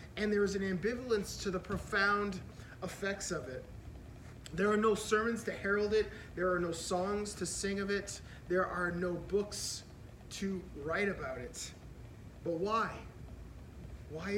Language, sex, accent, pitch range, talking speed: English, male, American, 195-230 Hz, 155 wpm